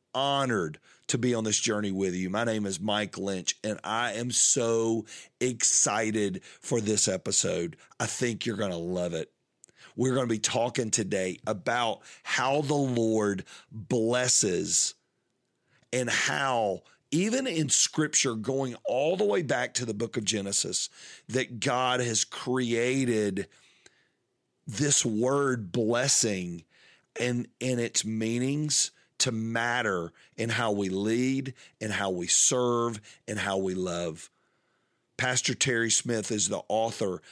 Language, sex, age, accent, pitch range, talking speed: English, male, 40-59, American, 105-125 Hz, 140 wpm